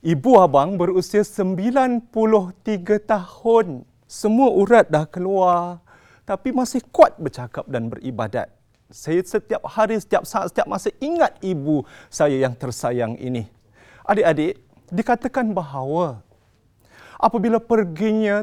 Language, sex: Malay, male